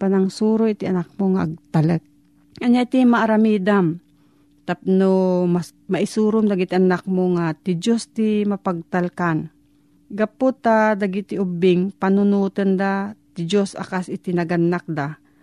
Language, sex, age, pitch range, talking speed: Filipino, female, 40-59, 170-220 Hz, 120 wpm